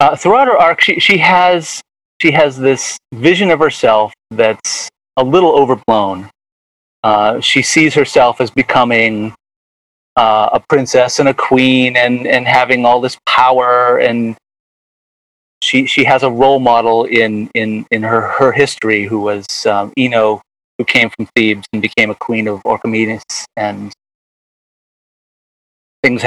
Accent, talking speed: American, 145 wpm